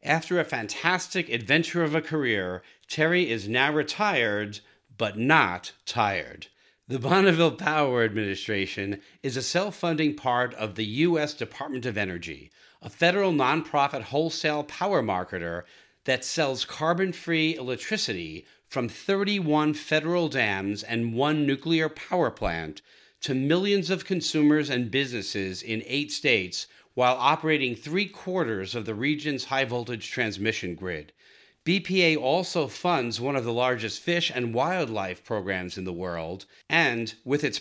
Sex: male